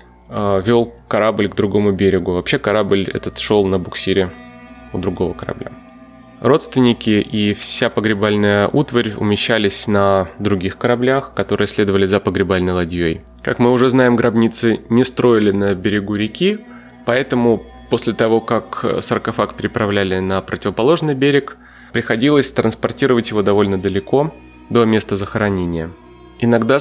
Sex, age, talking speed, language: male, 20-39, 125 wpm, Russian